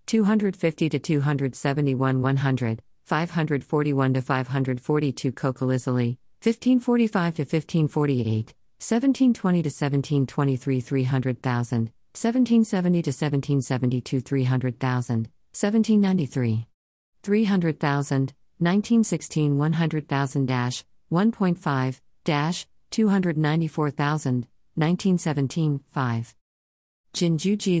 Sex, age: female, 50-69